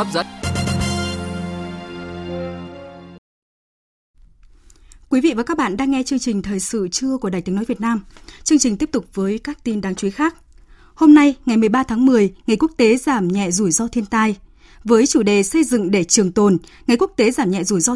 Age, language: 20-39, Vietnamese